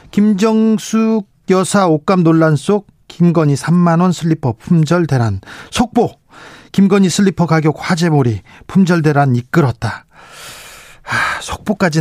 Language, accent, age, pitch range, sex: Korean, native, 40-59, 145-205 Hz, male